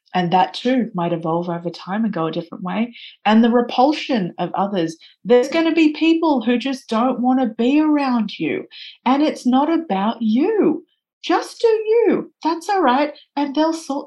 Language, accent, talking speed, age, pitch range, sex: English, Australian, 190 wpm, 30-49, 185-260 Hz, female